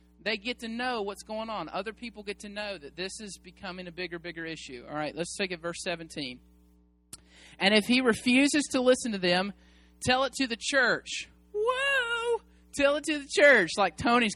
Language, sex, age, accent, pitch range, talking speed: English, male, 30-49, American, 155-235 Hz, 200 wpm